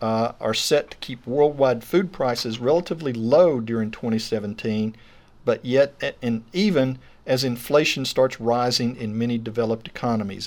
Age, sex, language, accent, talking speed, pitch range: 50-69, male, English, American, 145 wpm, 115-135 Hz